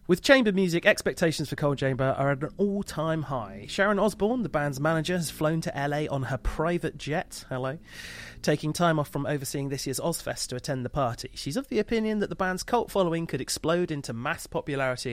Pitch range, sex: 115-165 Hz, male